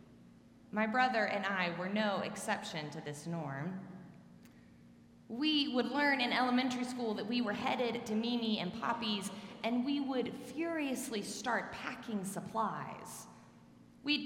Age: 30-49